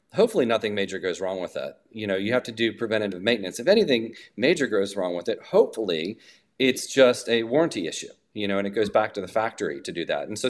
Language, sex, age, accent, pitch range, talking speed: English, male, 40-59, American, 100-135 Hz, 240 wpm